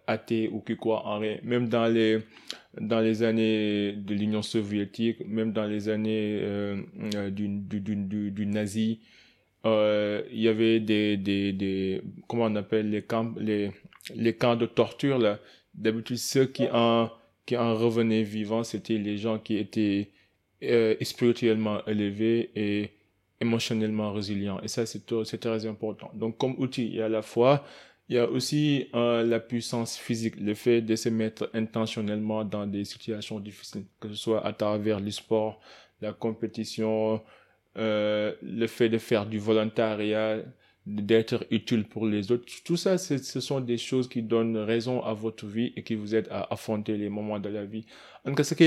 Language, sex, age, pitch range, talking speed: French, male, 20-39, 105-115 Hz, 175 wpm